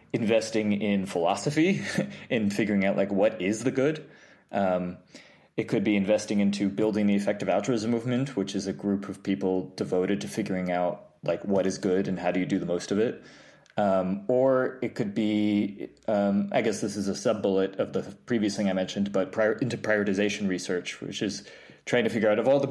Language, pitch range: English, 100-120 Hz